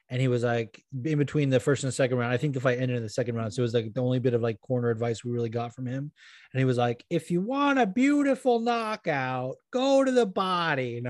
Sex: male